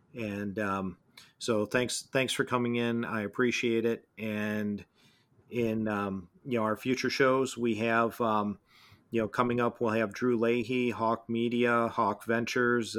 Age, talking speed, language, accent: 40-59, 155 wpm, English, American